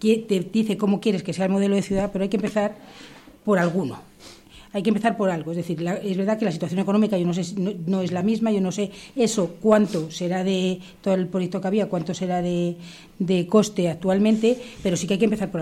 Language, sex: Spanish, female